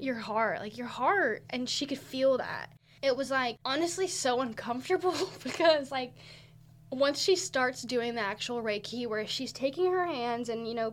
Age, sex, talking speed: 10-29, female, 180 wpm